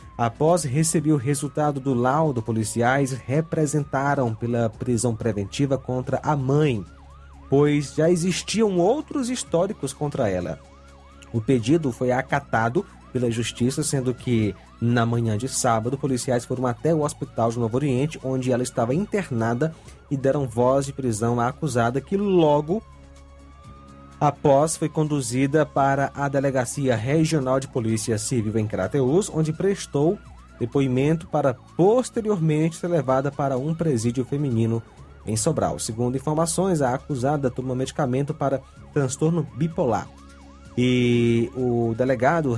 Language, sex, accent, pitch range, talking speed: Portuguese, male, Brazilian, 115-150 Hz, 130 wpm